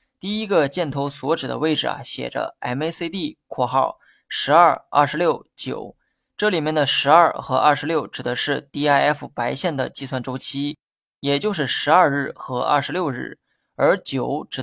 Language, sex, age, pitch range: Chinese, male, 20-39, 130-155 Hz